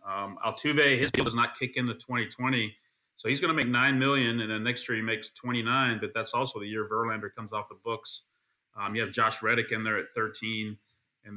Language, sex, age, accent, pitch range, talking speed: English, male, 30-49, American, 105-125 Hz, 225 wpm